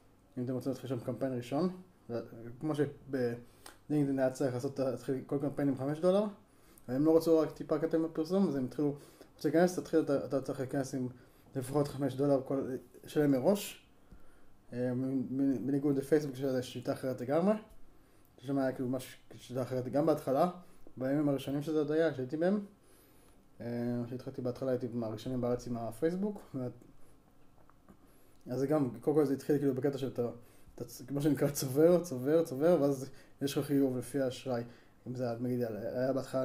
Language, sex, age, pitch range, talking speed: Hebrew, male, 20-39, 125-150 Hz, 165 wpm